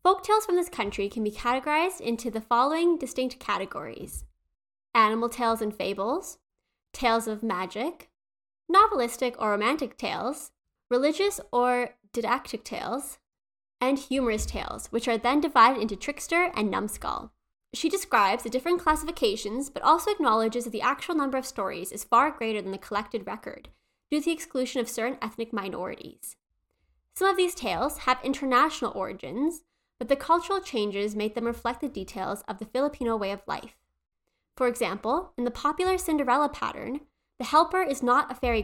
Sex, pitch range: female, 225-295 Hz